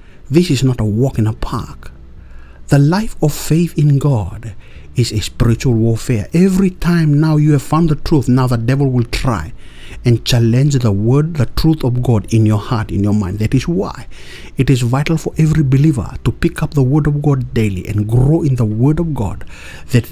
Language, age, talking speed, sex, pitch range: English, 60-79, 210 wpm, male, 110-155 Hz